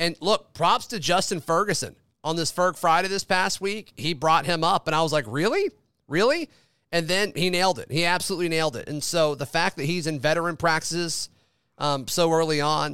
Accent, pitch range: American, 145-195 Hz